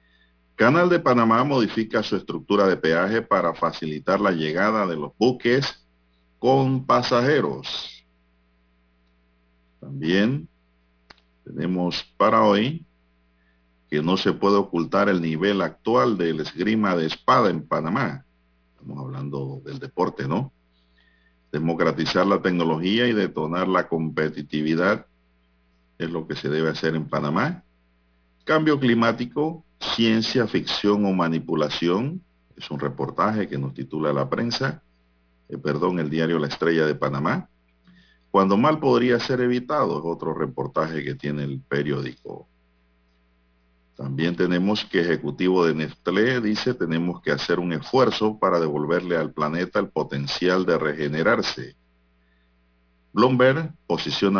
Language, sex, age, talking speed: Spanish, male, 50-69, 120 wpm